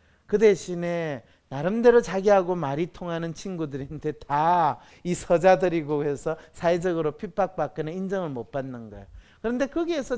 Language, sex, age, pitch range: Korean, male, 40-59, 155-225 Hz